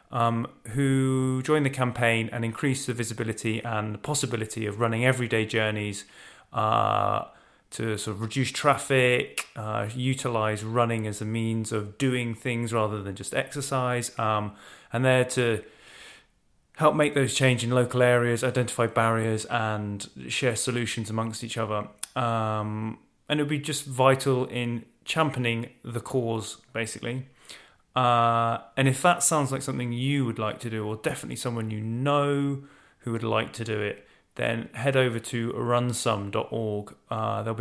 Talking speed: 155 wpm